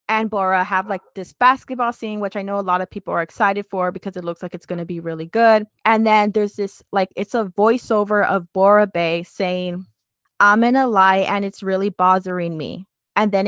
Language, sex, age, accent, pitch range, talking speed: English, female, 20-39, American, 185-225 Hz, 225 wpm